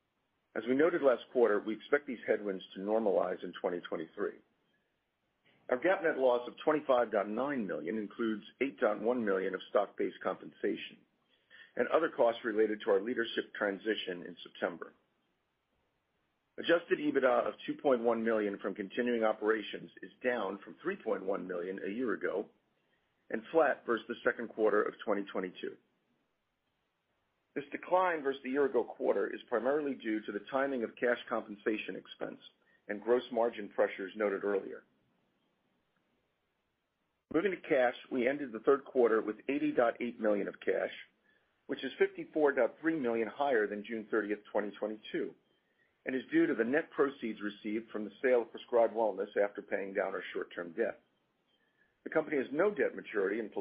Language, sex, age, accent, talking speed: English, male, 50-69, American, 150 wpm